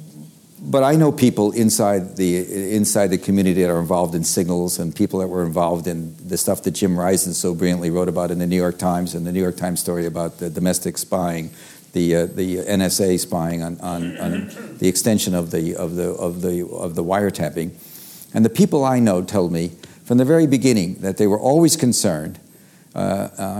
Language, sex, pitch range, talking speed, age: English, male, 90-115 Hz, 205 wpm, 50-69